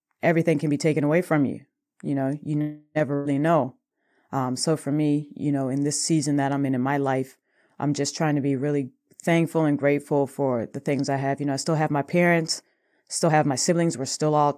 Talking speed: 230 wpm